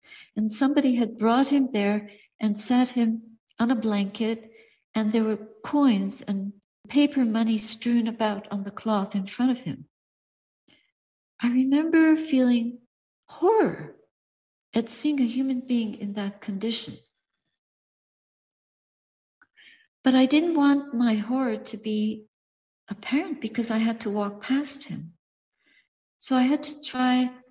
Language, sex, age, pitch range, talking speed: English, female, 60-79, 220-275 Hz, 135 wpm